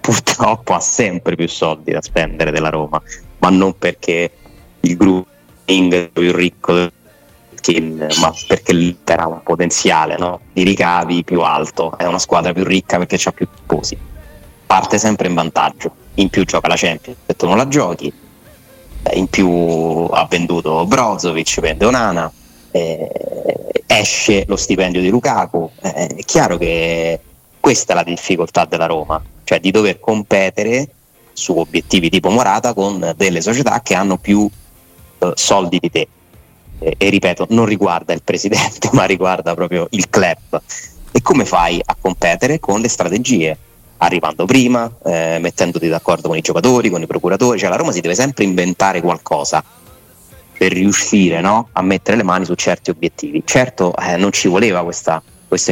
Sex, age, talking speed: male, 30-49, 160 wpm